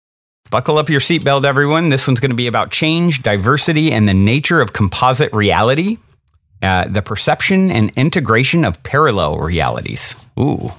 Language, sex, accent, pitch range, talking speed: English, male, American, 105-155 Hz, 155 wpm